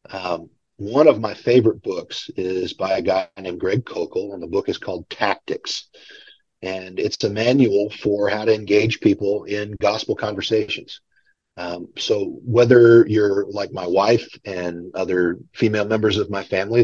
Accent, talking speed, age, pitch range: American, 160 wpm, 40-59, 100-140 Hz